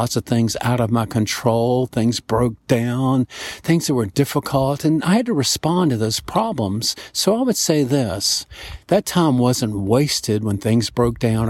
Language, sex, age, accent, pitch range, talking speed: English, male, 50-69, American, 115-150 Hz, 185 wpm